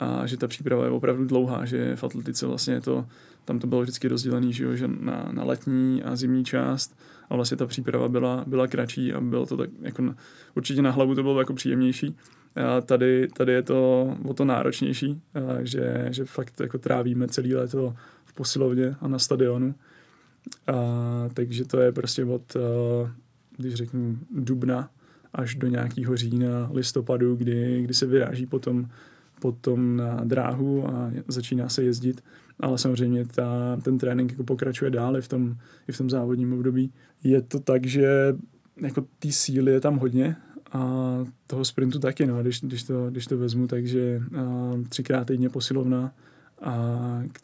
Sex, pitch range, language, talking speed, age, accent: male, 120-130 Hz, Czech, 165 wpm, 20-39, native